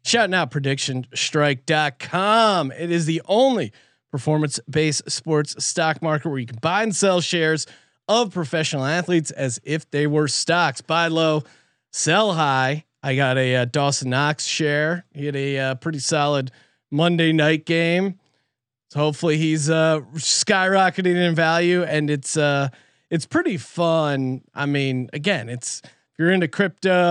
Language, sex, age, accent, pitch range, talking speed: English, male, 30-49, American, 140-170 Hz, 150 wpm